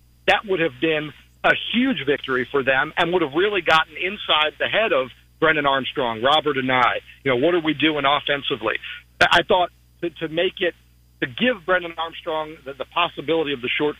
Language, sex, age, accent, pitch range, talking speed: English, male, 50-69, American, 135-165 Hz, 195 wpm